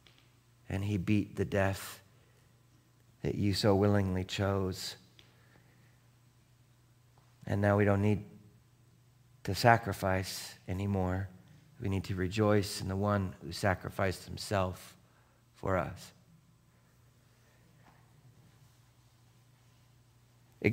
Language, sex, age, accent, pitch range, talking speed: English, male, 40-59, American, 120-160 Hz, 90 wpm